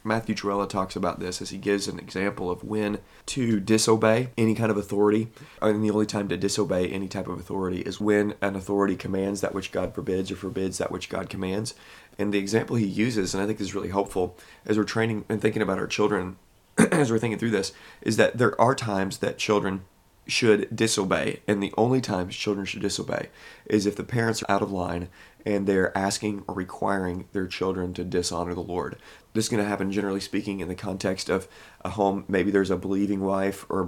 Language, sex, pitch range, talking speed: English, male, 95-105 Hz, 220 wpm